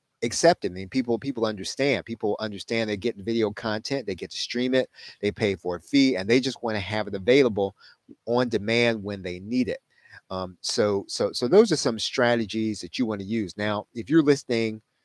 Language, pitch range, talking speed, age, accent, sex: English, 95-120 Hz, 210 wpm, 30-49, American, male